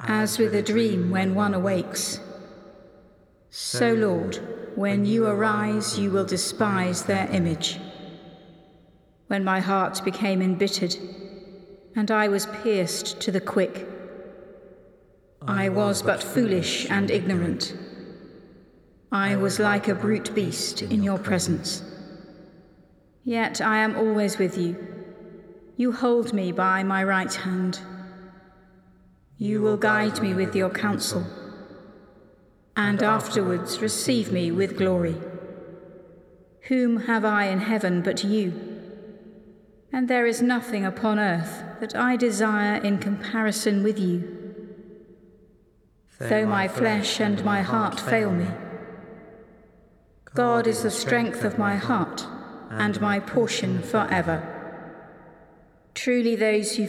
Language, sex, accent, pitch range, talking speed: English, female, British, 190-215 Hz, 120 wpm